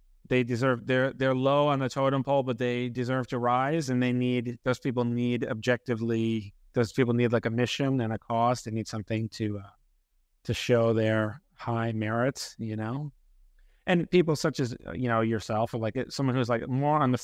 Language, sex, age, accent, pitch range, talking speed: English, male, 30-49, American, 115-140 Hz, 200 wpm